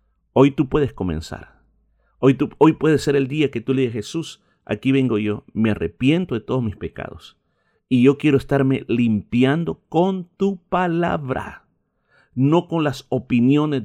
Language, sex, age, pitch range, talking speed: Spanish, male, 50-69, 105-155 Hz, 155 wpm